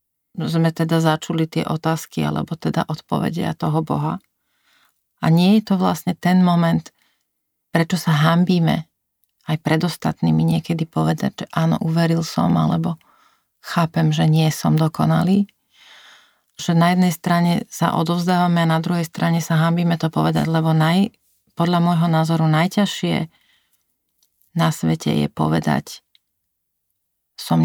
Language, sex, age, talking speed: Slovak, female, 40-59, 130 wpm